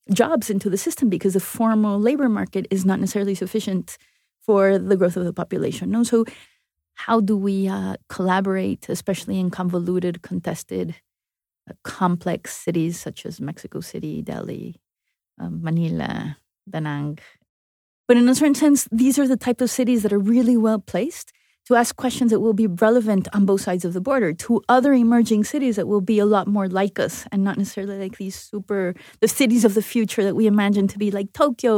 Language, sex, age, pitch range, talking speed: English, female, 30-49, 190-235 Hz, 190 wpm